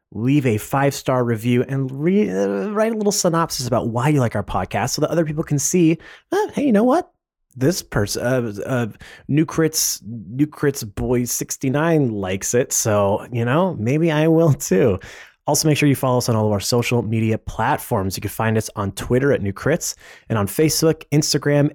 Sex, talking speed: male, 200 wpm